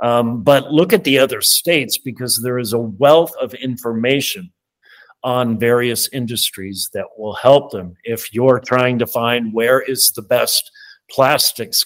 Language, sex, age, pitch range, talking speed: English, male, 50-69, 115-145 Hz, 155 wpm